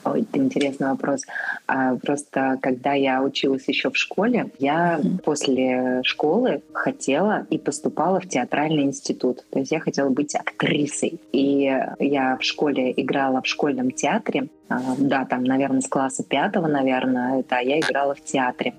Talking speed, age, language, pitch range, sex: 145 wpm, 20-39, Russian, 135-170 Hz, female